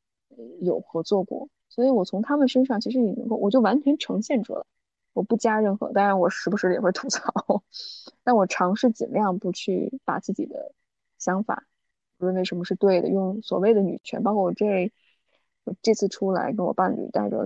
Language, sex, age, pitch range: Chinese, female, 20-39, 195-255 Hz